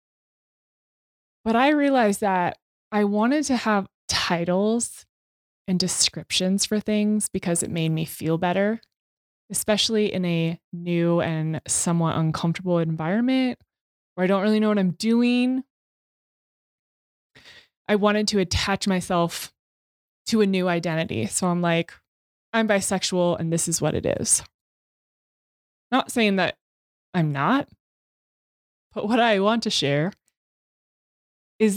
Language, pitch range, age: English, 170-210 Hz, 20-39